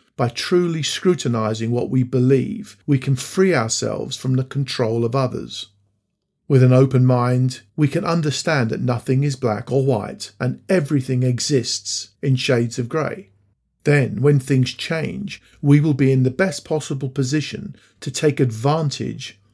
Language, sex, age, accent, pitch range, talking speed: English, male, 50-69, British, 120-145 Hz, 155 wpm